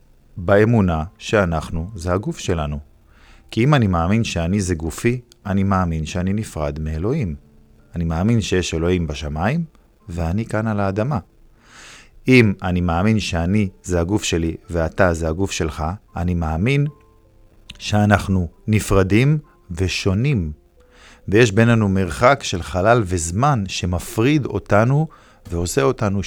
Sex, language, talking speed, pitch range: male, Hebrew, 120 wpm, 85-110 Hz